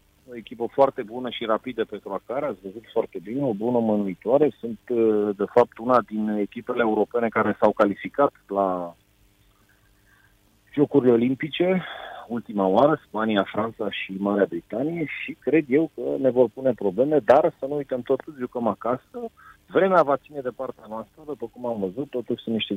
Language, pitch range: Romanian, 100-125 Hz